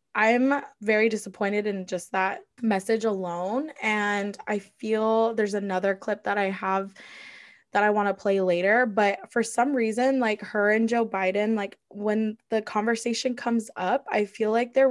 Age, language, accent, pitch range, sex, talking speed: 10-29, English, American, 190-230 Hz, female, 170 wpm